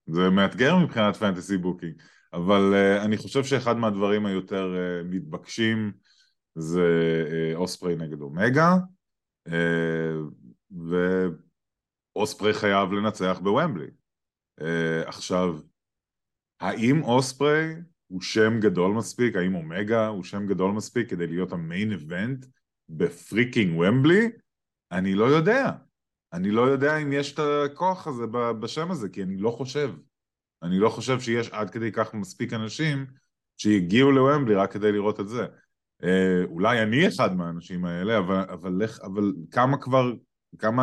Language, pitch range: English, 90-125 Hz